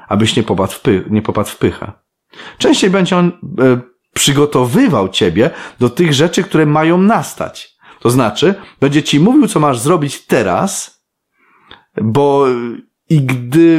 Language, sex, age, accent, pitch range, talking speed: Polish, male, 30-49, native, 110-160 Hz, 150 wpm